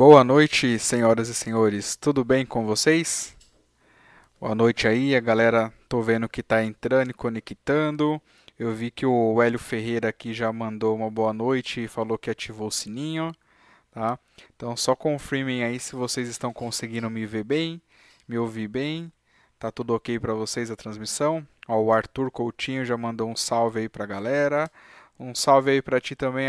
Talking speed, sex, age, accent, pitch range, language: 175 wpm, male, 20-39, Brazilian, 115-140 Hz, Portuguese